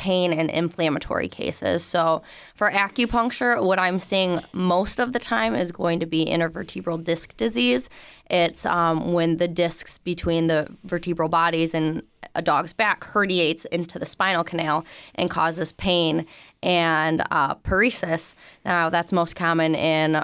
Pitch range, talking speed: 160-180 Hz, 150 wpm